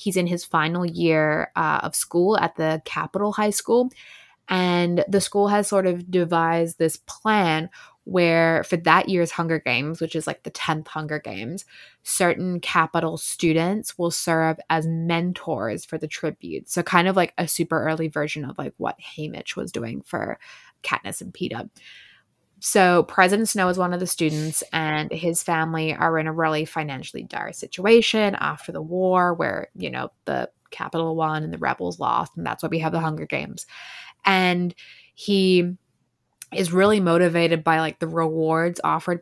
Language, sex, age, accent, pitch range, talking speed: English, female, 20-39, American, 160-185 Hz, 170 wpm